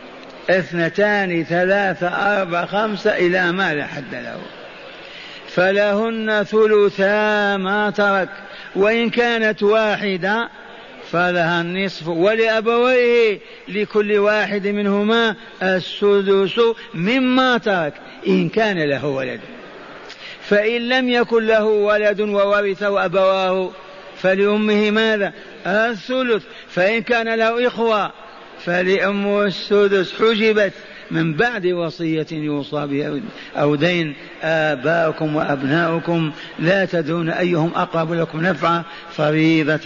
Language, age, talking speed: Arabic, 50-69, 95 wpm